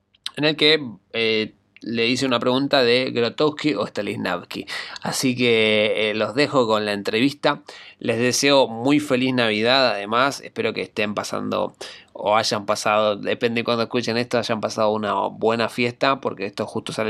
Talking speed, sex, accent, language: 165 wpm, male, Argentinian, Spanish